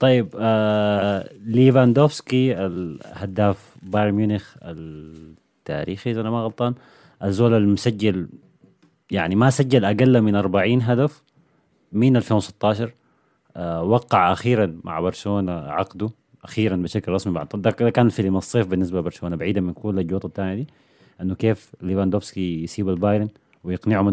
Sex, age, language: male, 30-49, Arabic